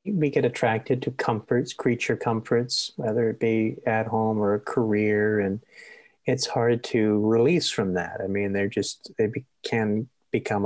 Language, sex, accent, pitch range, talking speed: English, male, American, 105-140 Hz, 165 wpm